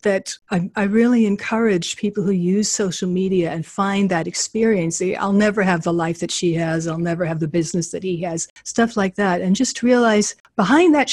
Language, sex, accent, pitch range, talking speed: English, female, American, 175-235 Hz, 210 wpm